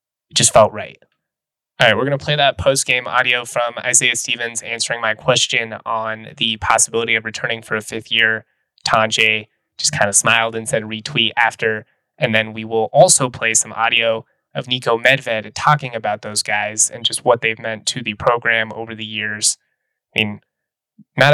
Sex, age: male, 20-39